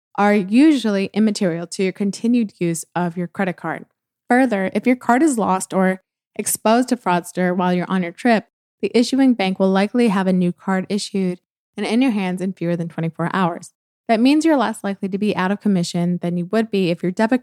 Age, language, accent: 20-39, English, American